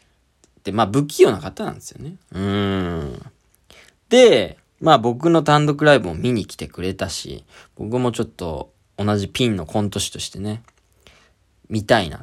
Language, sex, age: Japanese, male, 20-39